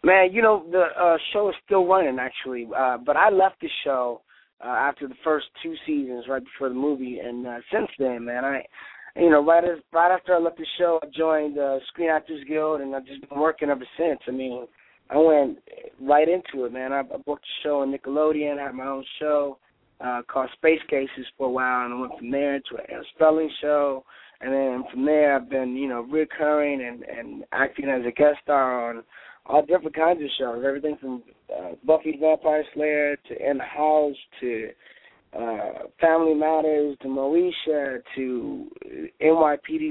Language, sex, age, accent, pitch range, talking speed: English, male, 20-39, American, 130-160 Hz, 195 wpm